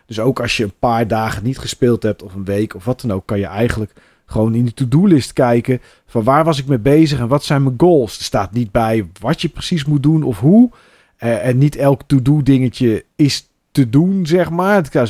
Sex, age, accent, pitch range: male, 40-59, Dutch, 110-140 Hz